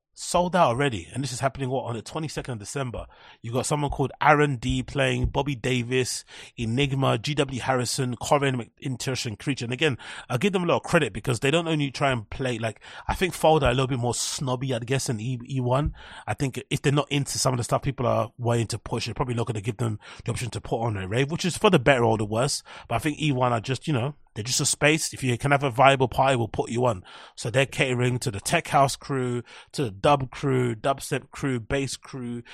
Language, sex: English, male